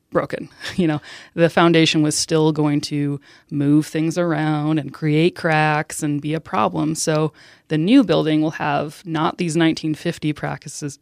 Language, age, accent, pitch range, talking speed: English, 20-39, American, 150-175 Hz, 160 wpm